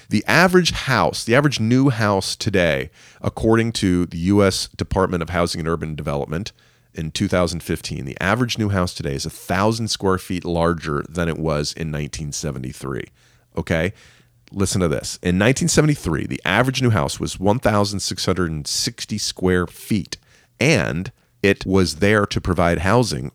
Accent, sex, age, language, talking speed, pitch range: American, male, 40-59, English, 145 wpm, 85-115 Hz